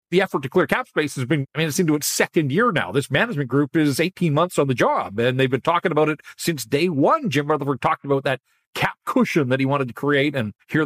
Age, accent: 40-59, American